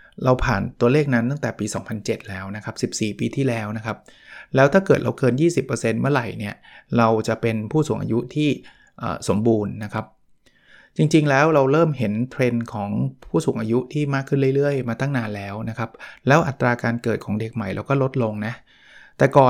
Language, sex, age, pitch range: Thai, male, 20-39, 110-135 Hz